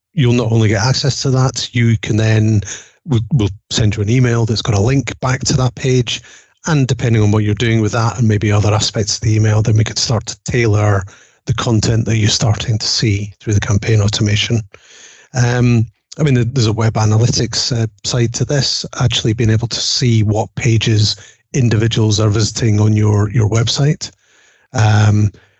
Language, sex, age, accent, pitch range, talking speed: English, male, 30-49, British, 110-120 Hz, 190 wpm